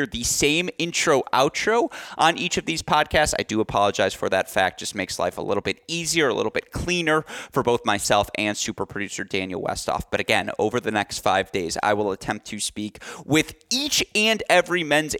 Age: 30-49